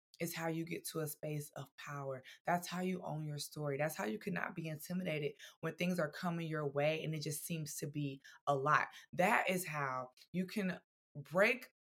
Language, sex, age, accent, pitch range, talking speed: English, female, 20-39, American, 155-190 Hz, 205 wpm